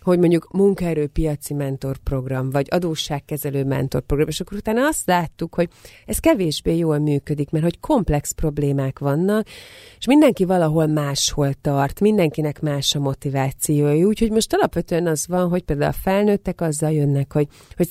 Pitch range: 140-180 Hz